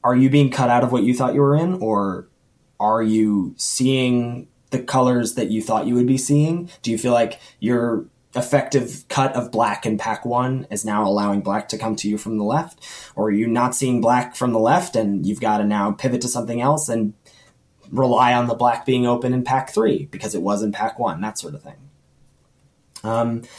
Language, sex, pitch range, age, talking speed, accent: English, male, 115-145 Hz, 20-39, 220 wpm, American